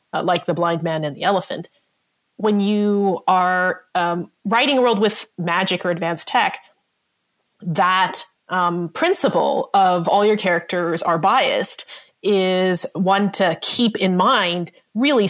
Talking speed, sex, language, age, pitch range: 140 wpm, female, English, 30-49, 180-225 Hz